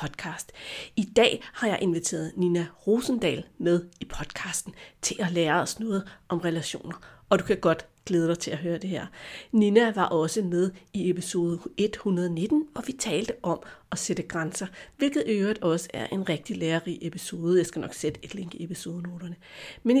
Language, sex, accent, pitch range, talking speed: Danish, female, native, 175-220 Hz, 180 wpm